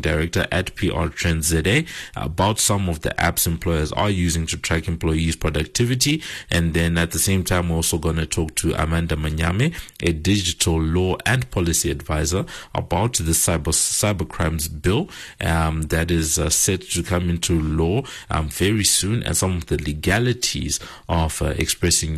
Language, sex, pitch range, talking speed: English, male, 80-100 Hz, 170 wpm